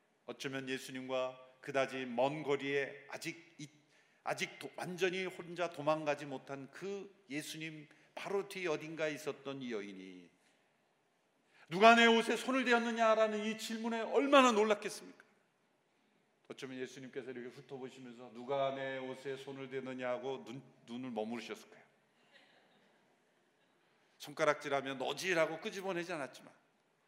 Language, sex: Korean, male